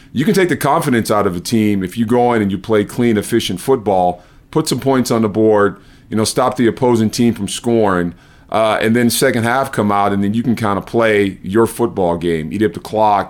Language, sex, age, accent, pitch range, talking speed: English, male, 30-49, American, 100-125 Hz, 245 wpm